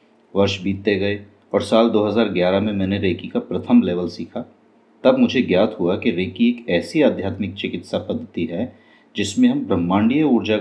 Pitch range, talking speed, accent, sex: 100-115 Hz, 165 wpm, native, male